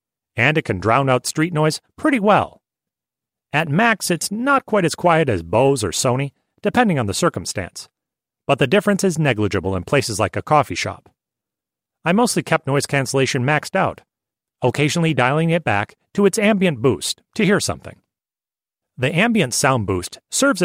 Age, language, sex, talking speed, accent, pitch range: 40-59, English, male, 170 wpm, American, 125-175 Hz